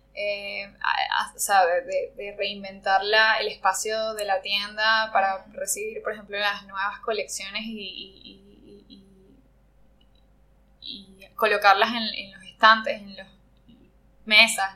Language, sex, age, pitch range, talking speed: Spanish, female, 10-29, 200-235 Hz, 105 wpm